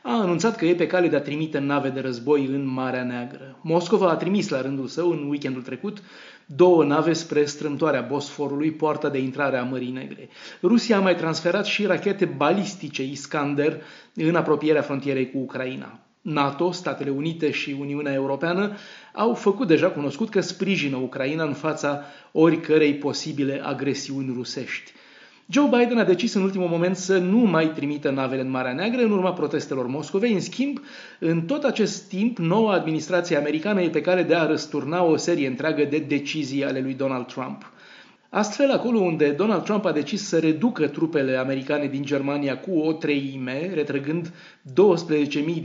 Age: 30-49